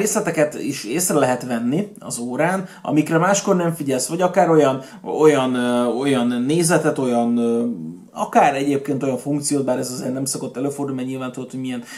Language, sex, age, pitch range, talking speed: Hungarian, male, 30-49, 130-160 Hz, 160 wpm